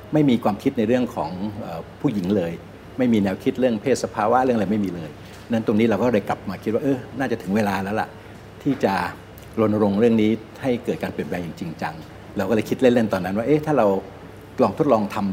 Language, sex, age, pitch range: Thai, male, 60-79, 95-120 Hz